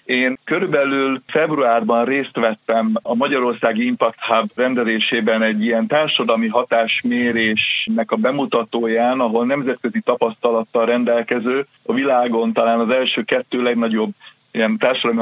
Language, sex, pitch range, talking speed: Hungarian, male, 115-135 Hz, 115 wpm